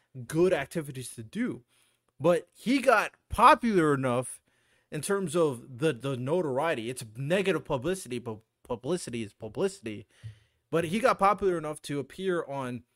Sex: male